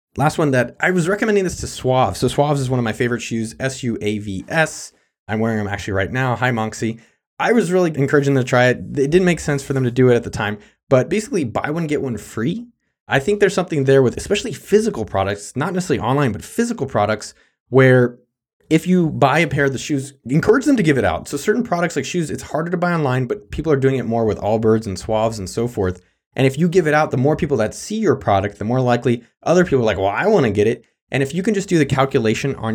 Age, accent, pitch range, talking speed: 20-39, American, 115-165 Hz, 260 wpm